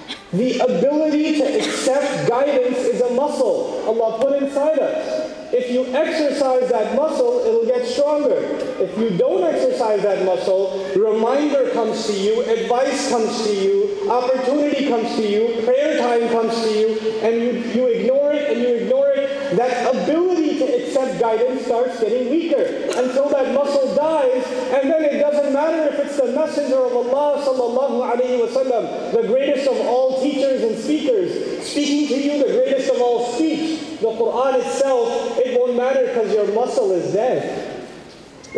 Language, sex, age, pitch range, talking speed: English, male, 40-59, 230-300 Hz, 150 wpm